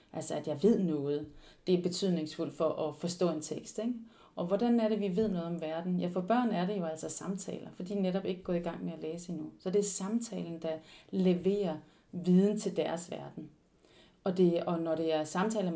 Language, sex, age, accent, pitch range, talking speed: Danish, female, 30-49, native, 170-195 Hz, 225 wpm